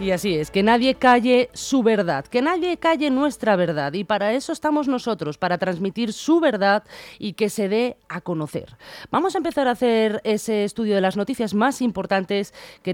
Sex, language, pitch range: female, Spanish, 175-245 Hz